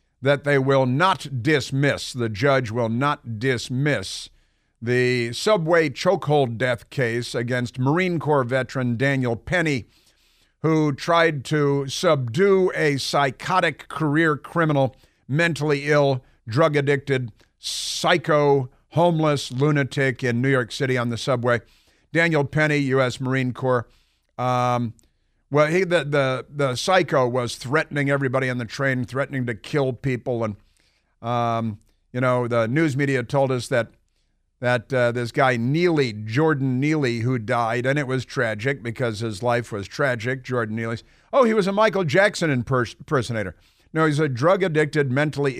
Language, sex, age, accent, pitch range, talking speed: English, male, 50-69, American, 120-150 Hz, 140 wpm